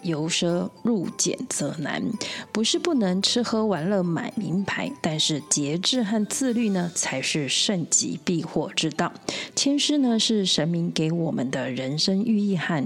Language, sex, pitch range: Chinese, female, 170-230 Hz